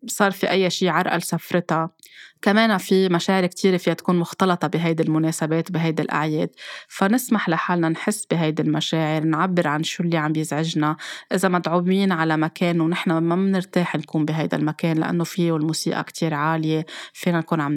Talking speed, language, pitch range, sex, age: 155 wpm, Arabic, 165-185 Hz, female, 20-39